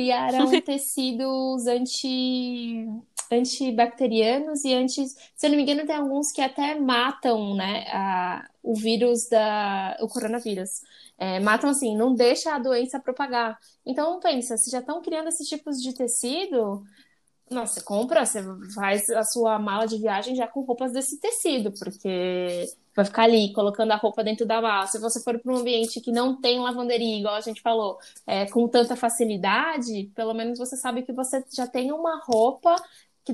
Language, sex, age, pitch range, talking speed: Portuguese, female, 10-29, 220-260 Hz, 160 wpm